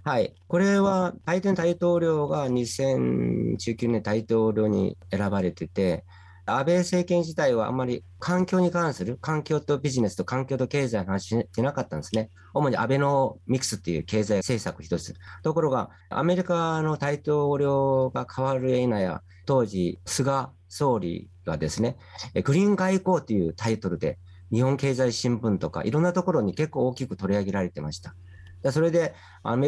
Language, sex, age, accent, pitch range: Japanese, male, 40-59, native, 95-145 Hz